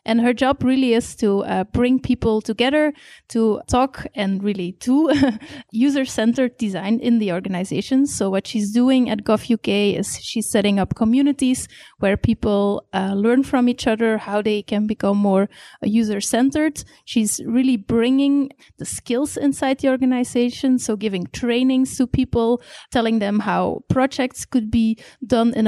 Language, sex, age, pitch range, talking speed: English, female, 30-49, 210-260 Hz, 150 wpm